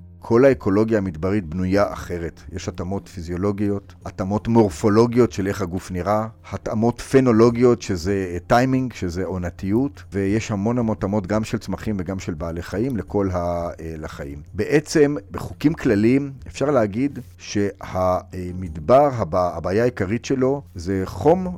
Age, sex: 50-69, male